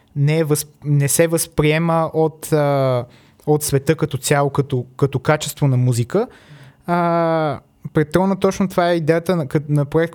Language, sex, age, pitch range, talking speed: Bulgarian, male, 20-39, 145-180 Hz, 150 wpm